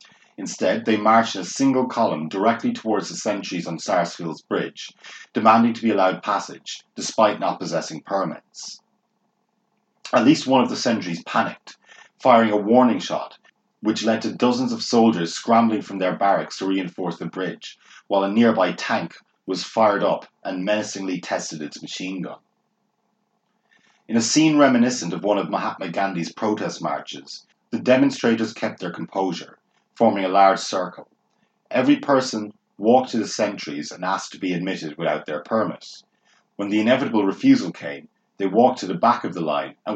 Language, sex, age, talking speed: English, male, 30-49, 165 wpm